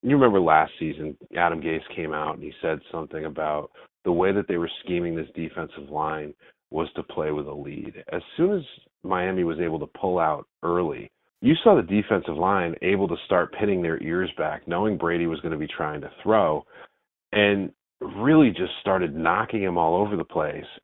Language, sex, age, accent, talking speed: English, male, 40-59, American, 200 wpm